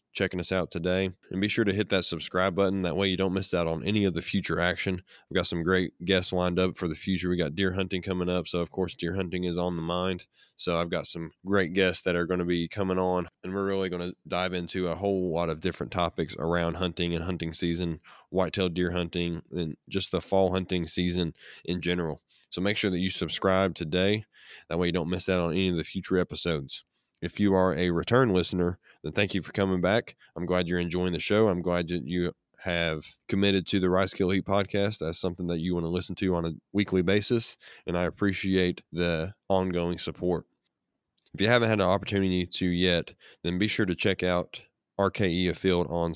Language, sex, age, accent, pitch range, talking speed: English, male, 20-39, American, 85-95 Hz, 230 wpm